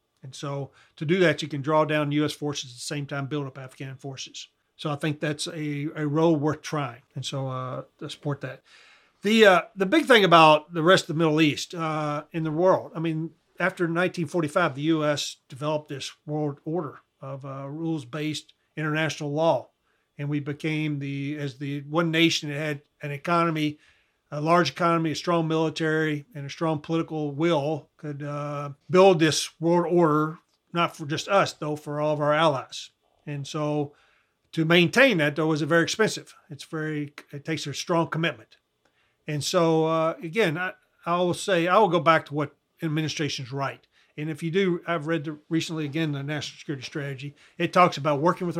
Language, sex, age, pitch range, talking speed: English, male, 40-59, 145-165 Hz, 195 wpm